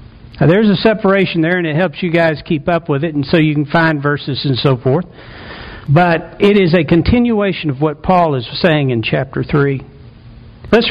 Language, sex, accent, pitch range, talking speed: English, male, American, 160-235 Hz, 205 wpm